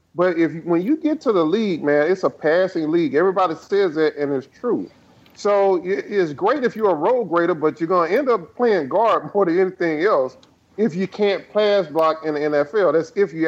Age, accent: 40-59, American